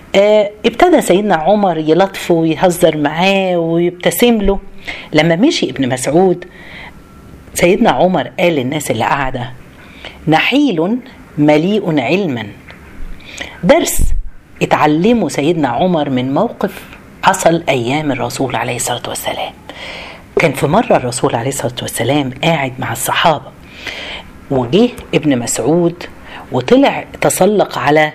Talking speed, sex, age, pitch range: 105 wpm, female, 40-59, 145-225 Hz